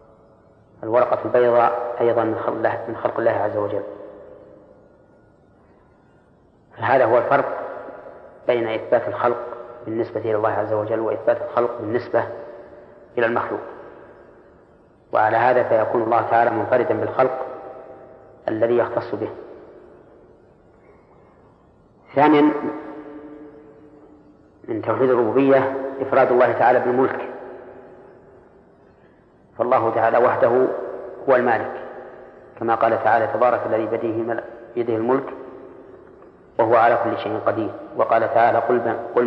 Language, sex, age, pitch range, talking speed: Arabic, female, 40-59, 115-135 Hz, 95 wpm